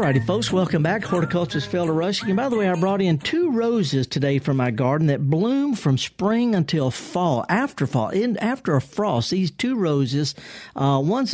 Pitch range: 135-180 Hz